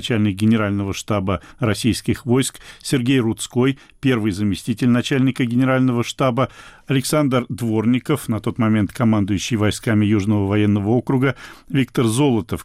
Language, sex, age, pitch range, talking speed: Russian, male, 40-59, 110-130 Hz, 115 wpm